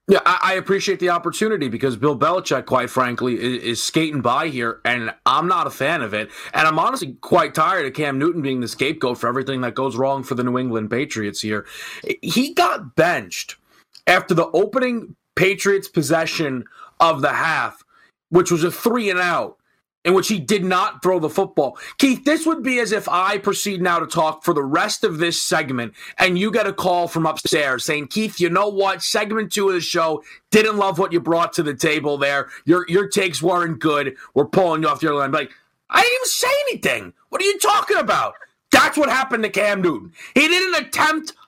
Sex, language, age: male, English, 30-49